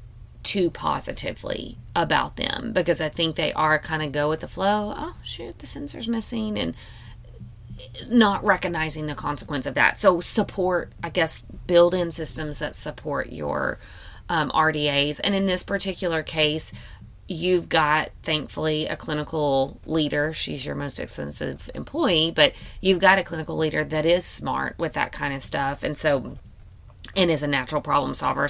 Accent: American